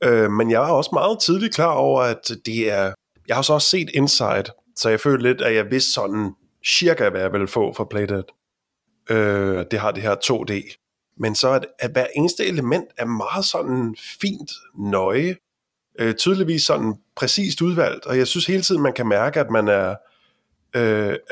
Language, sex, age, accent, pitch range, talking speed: Danish, male, 20-39, native, 110-155 Hz, 190 wpm